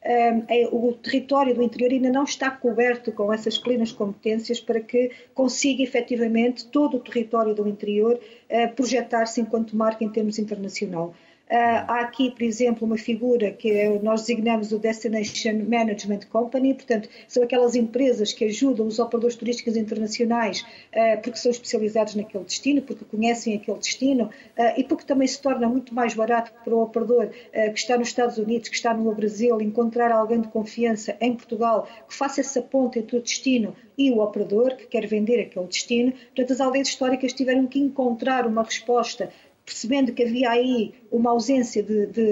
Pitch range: 225-250 Hz